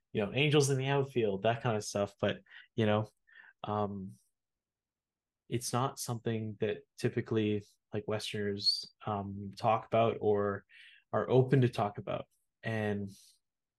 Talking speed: 135 wpm